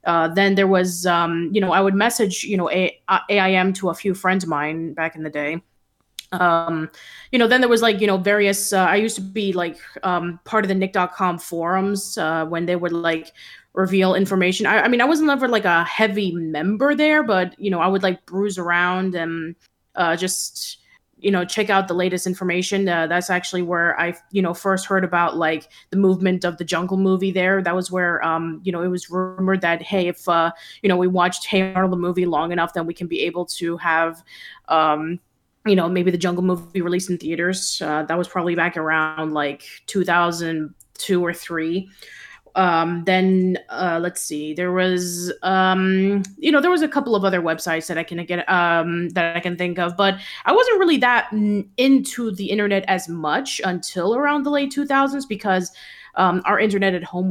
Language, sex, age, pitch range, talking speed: English, female, 20-39, 170-195 Hz, 205 wpm